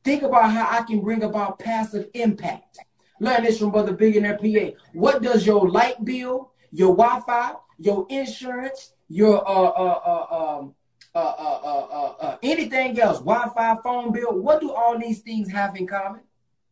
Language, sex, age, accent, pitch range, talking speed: English, male, 30-49, American, 165-240 Hz, 175 wpm